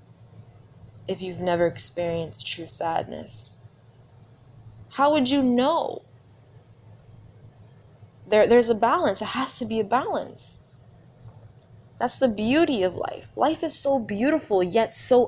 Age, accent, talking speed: 20-39, American, 120 wpm